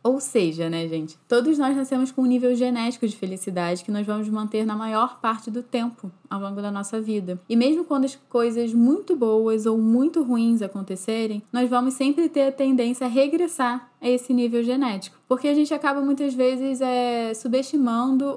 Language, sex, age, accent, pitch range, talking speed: Portuguese, female, 10-29, Brazilian, 210-260 Hz, 190 wpm